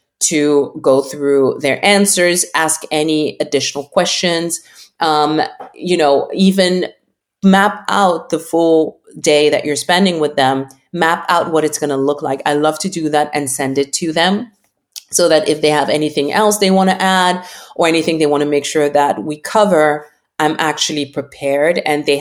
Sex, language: female, English